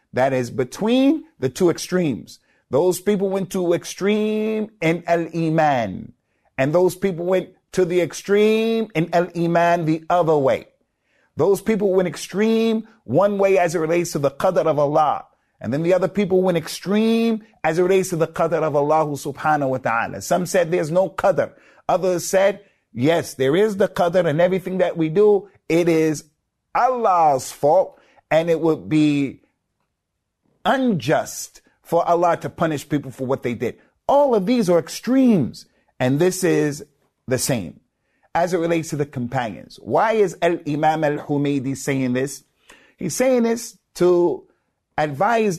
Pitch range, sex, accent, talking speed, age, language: 155-195 Hz, male, American, 160 wpm, 50-69, English